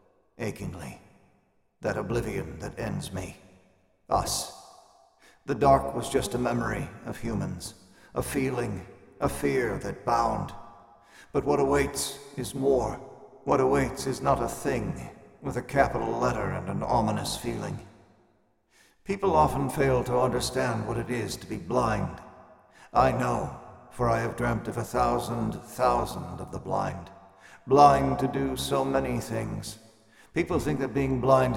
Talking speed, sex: 145 wpm, male